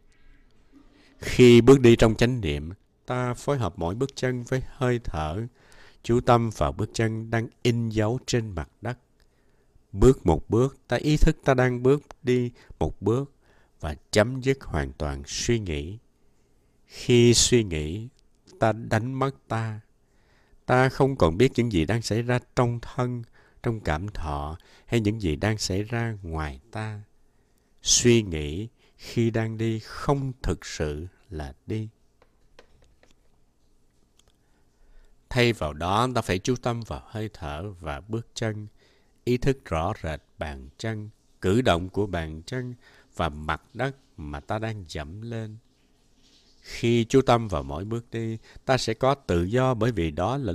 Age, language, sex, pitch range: 60-79, Vietnamese, male, 95-125 Hz